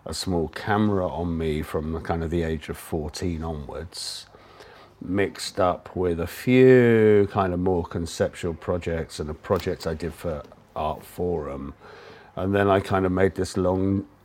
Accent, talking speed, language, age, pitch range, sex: British, 170 wpm, English, 50-69, 85-100 Hz, male